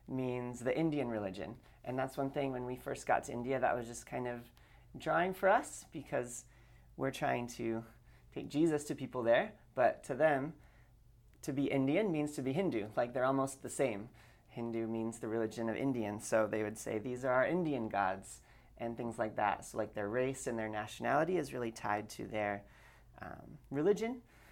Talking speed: 195 wpm